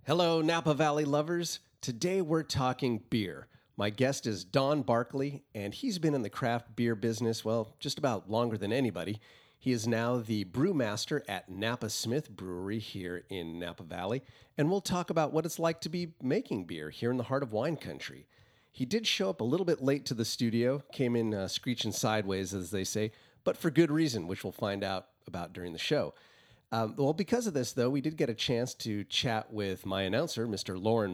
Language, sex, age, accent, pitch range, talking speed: English, male, 30-49, American, 100-140 Hz, 205 wpm